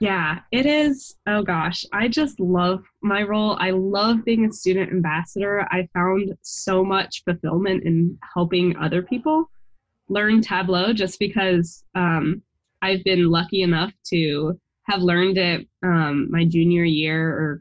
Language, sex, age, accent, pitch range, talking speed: English, female, 10-29, American, 165-205 Hz, 145 wpm